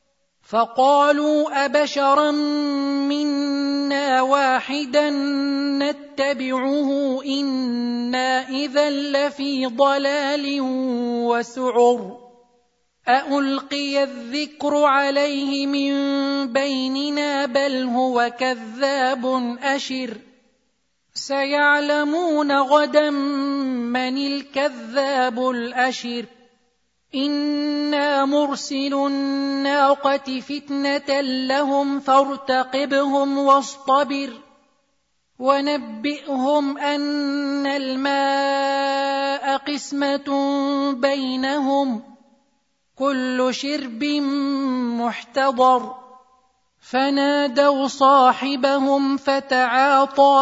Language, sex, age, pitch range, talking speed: Arabic, male, 30-49, 255-280 Hz, 50 wpm